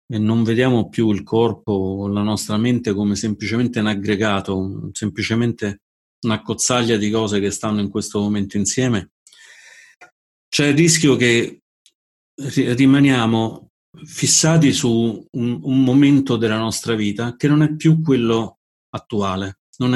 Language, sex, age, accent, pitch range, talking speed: Italian, male, 40-59, native, 105-125 Hz, 135 wpm